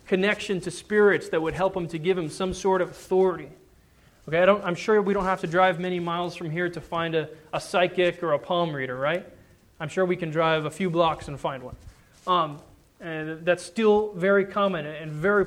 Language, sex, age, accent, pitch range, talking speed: English, male, 20-39, American, 155-195 Hz, 220 wpm